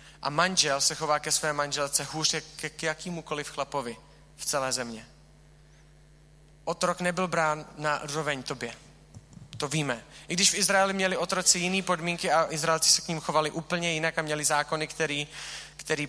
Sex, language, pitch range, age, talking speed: male, Czech, 145-170 Hz, 30-49, 160 wpm